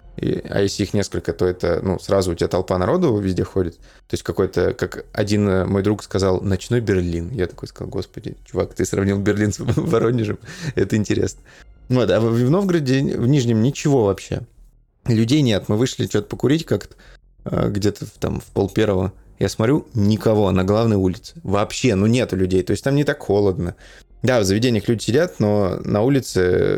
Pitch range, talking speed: 95-120 Hz, 175 wpm